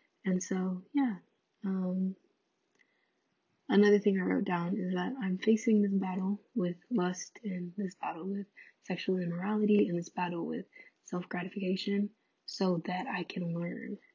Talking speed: 140 wpm